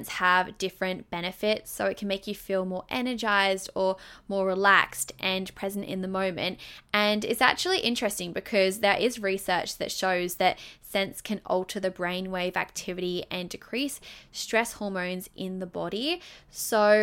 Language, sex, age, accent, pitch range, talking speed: English, female, 10-29, Australian, 185-225 Hz, 155 wpm